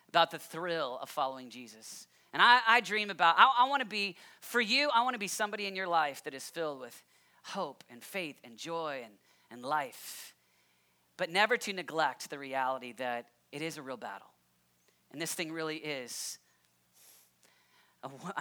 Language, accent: English, American